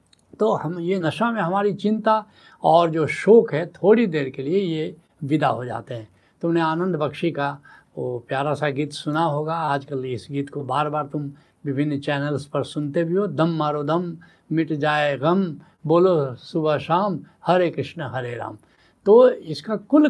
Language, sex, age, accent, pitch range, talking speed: Hindi, male, 70-89, native, 135-180 Hz, 180 wpm